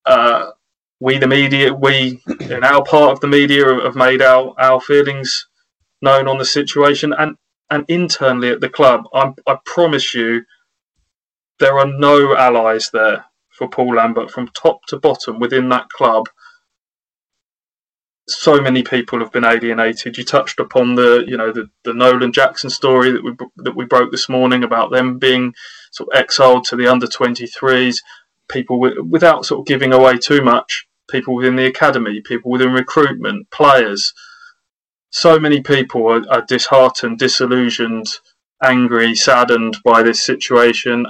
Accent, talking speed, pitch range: British, 155 wpm, 120-135 Hz